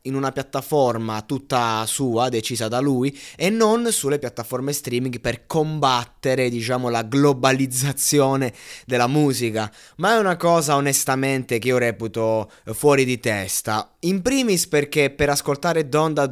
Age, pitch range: 20-39, 110-140 Hz